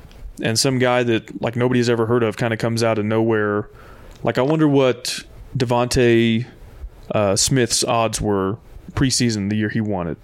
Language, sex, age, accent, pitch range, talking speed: English, male, 20-39, American, 110-125 Hz, 175 wpm